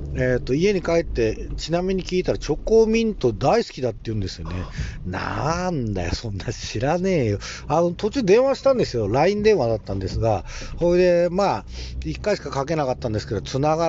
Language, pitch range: Japanese, 110-175 Hz